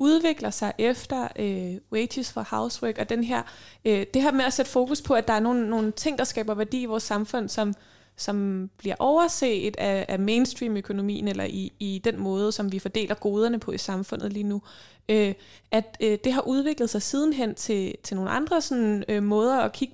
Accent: native